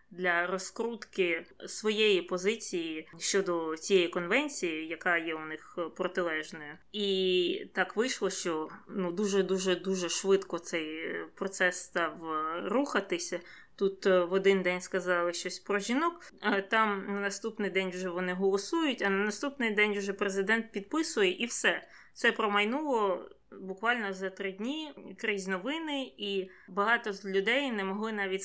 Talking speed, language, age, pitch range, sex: 135 wpm, Ukrainian, 20-39, 180-215 Hz, female